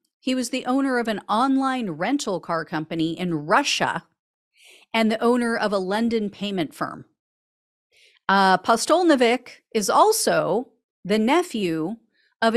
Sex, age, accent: female, 40-59, American